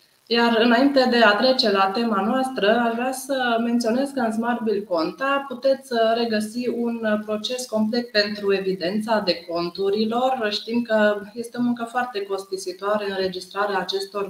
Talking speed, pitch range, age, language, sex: 145 wpm, 195-240 Hz, 20-39, Romanian, female